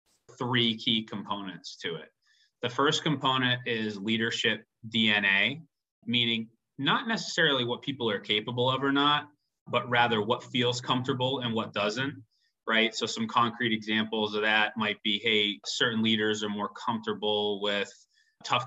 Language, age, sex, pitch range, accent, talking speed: English, 30-49, male, 105-125 Hz, American, 150 wpm